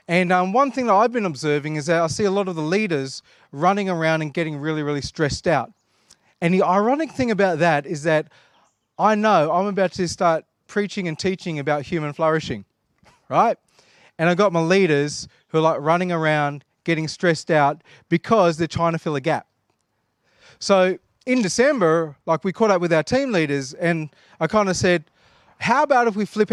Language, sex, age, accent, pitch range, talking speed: English, male, 30-49, Australian, 160-210 Hz, 195 wpm